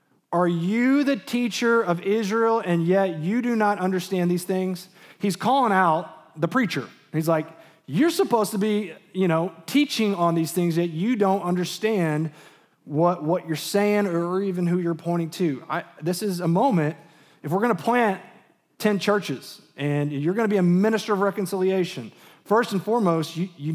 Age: 30-49